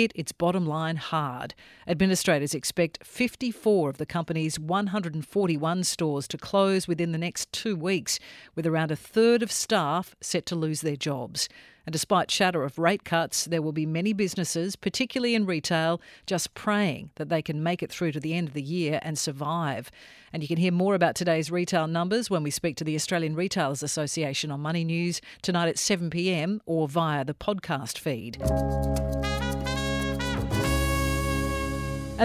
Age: 50-69